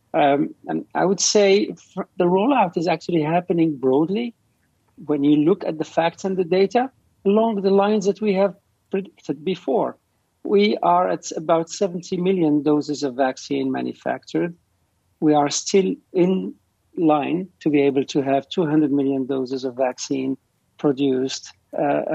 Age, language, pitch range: 50-69, English, 140-190 Hz